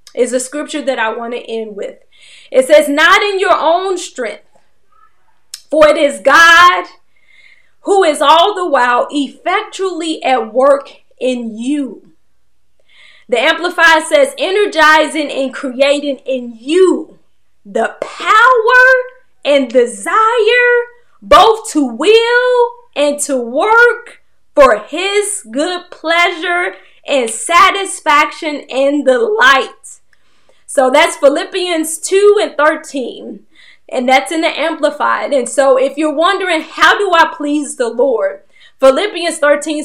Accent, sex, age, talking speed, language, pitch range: American, female, 20-39, 120 wpm, English, 270-365 Hz